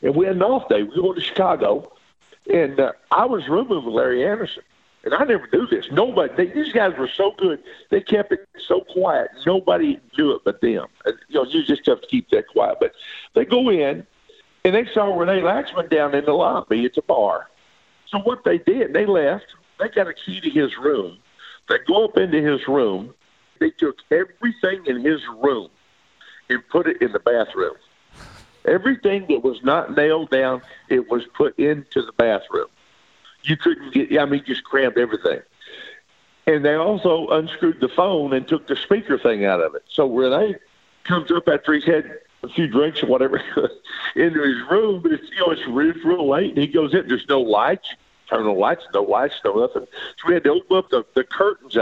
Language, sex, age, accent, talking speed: English, male, 50-69, American, 205 wpm